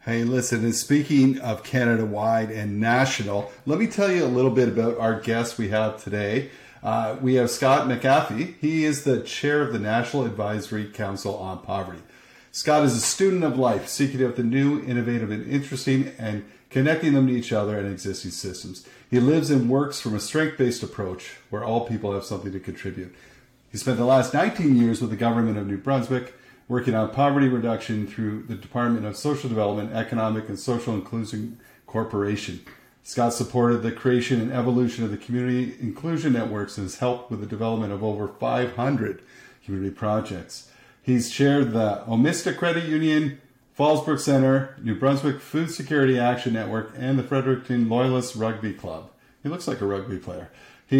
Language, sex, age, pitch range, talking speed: English, male, 40-59, 110-135 Hz, 175 wpm